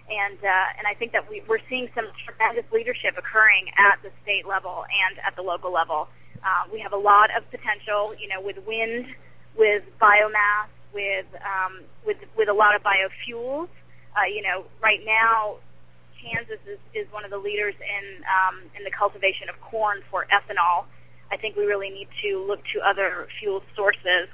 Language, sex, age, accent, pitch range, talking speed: English, female, 20-39, American, 190-220 Hz, 185 wpm